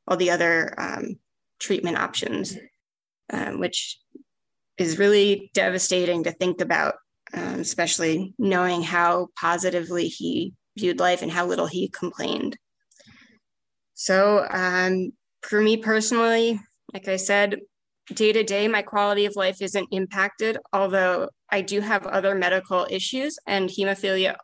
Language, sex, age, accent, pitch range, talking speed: English, female, 20-39, American, 180-200 Hz, 130 wpm